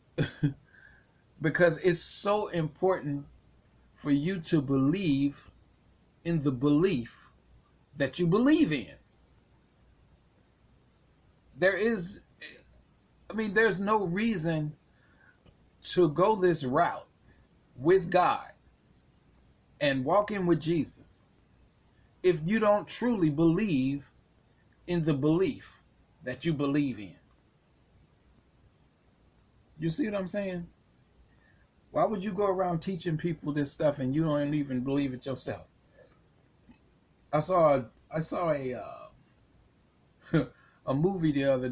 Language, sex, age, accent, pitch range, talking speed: English, male, 40-59, American, 130-180 Hz, 110 wpm